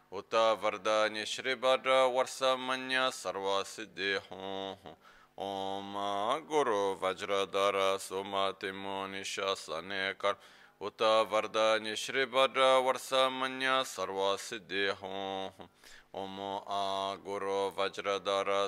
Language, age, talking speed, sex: Italian, 20-39, 85 wpm, male